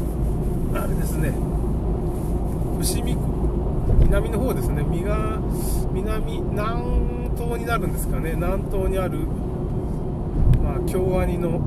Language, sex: Japanese, male